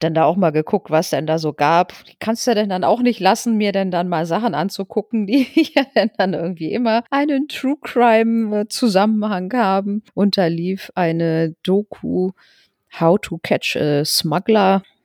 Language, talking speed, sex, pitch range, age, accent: German, 160 wpm, female, 160-225 Hz, 40-59, German